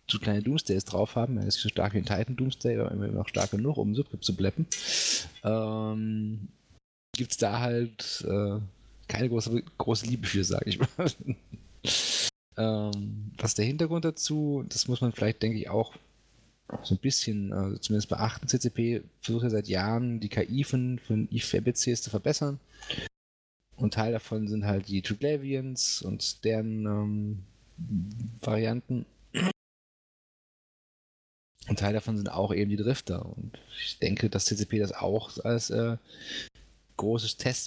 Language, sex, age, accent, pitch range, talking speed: German, male, 30-49, German, 100-120 Hz, 150 wpm